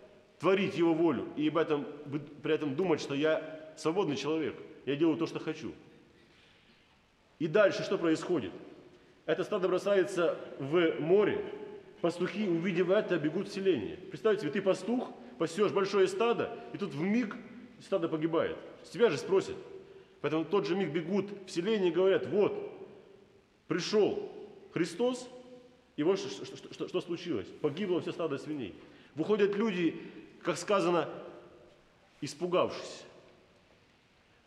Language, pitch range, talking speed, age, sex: Russian, 165-220 Hz, 140 wpm, 30-49, male